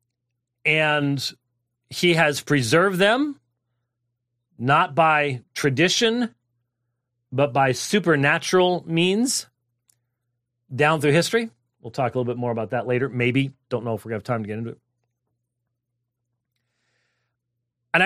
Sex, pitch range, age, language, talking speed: male, 120-165 Hz, 40-59, English, 125 wpm